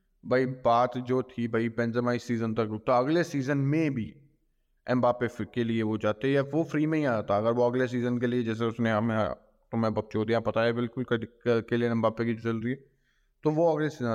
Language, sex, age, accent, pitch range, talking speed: Hindi, male, 20-39, native, 110-130 Hz, 215 wpm